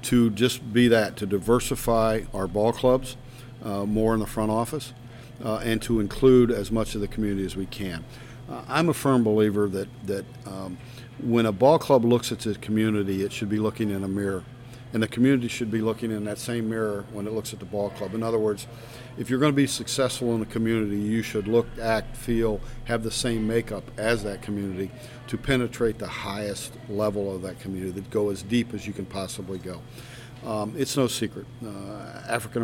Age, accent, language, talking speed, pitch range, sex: 50-69, American, English, 210 wpm, 105-120 Hz, male